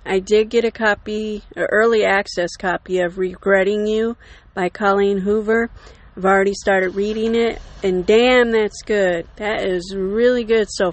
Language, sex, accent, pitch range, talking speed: English, female, American, 190-220 Hz, 160 wpm